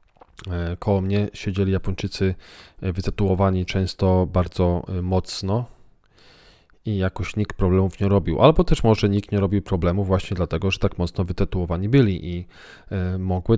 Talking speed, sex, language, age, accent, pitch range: 135 wpm, male, Polish, 40-59, native, 90-105 Hz